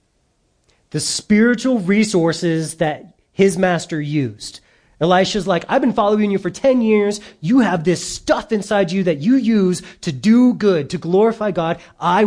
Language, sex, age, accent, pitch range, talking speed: English, male, 30-49, American, 145-210 Hz, 155 wpm